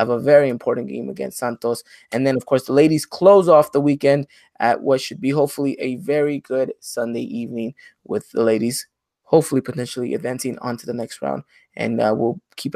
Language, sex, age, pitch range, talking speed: English, male, 20-39, 130-155 Hz, 195 wpm